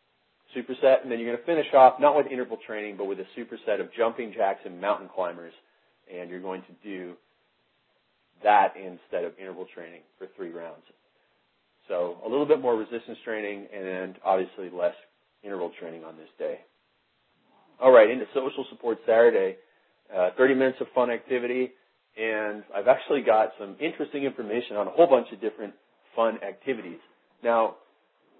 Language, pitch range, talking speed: English, 95-125 Hz, 165 wpm